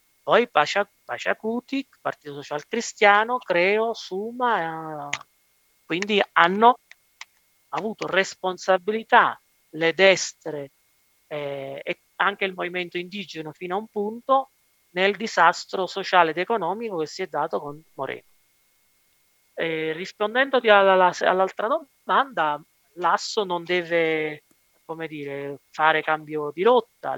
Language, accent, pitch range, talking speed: Italian, native, 150-200 Hz, 110 wpm